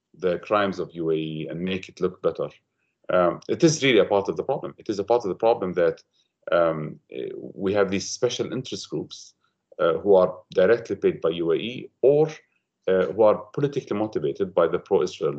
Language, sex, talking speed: English, male, 190 wpm